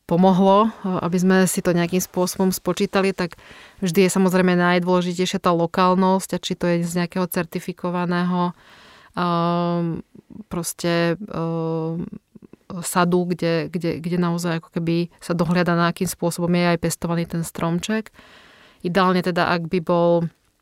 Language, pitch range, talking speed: Slovak, 170-185 Hz, 135 wpm